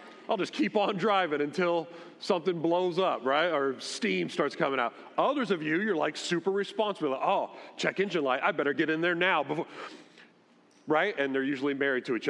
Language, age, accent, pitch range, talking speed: English, 40-59, American, 165-235 Hz, 195 wpm